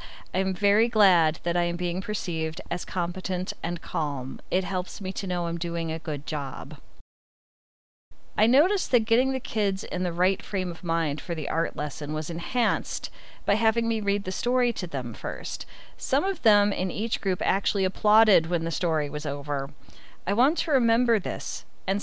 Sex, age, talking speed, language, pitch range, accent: female, 40-59, 185 wpm, English, 160-215 Hz, American